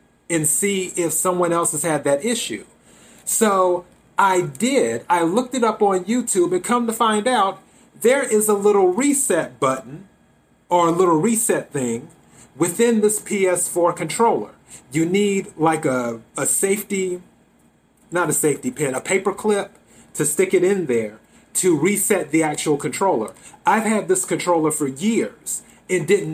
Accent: American